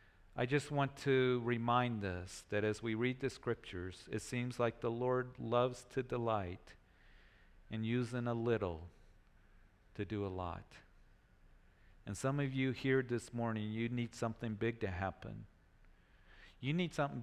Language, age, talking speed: English, 40-59, 155 wpm